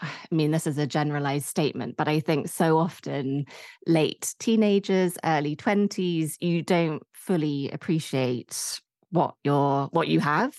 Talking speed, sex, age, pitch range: 135 wpm, female, 20-39, 145-165 Hz